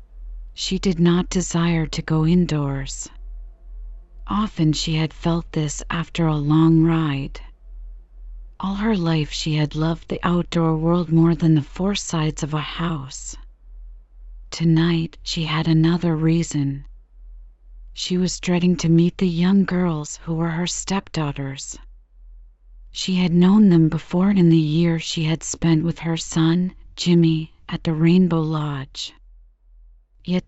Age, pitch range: 40-59, 150-180 Hz